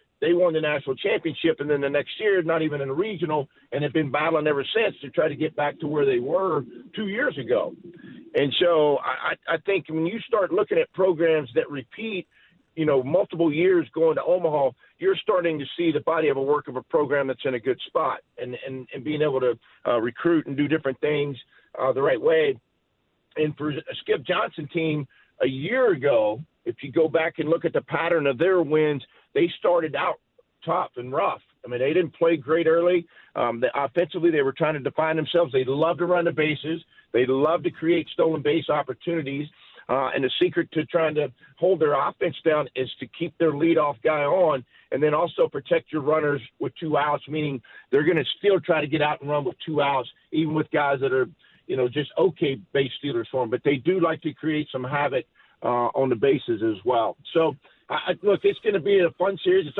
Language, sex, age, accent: English, male, 50-69, American